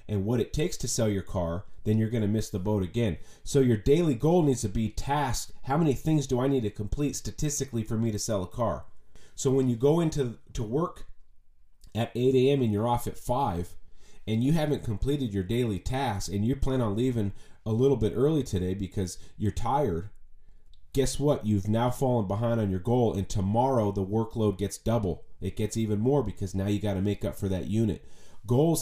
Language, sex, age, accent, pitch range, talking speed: English, male, 30-49, American, 100-130 Hz, 215 wpm